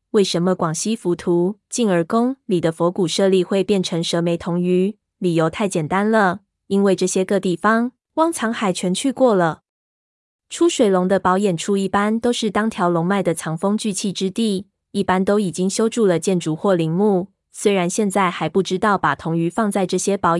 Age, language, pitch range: 20-39, Chinese, 175-210 Hz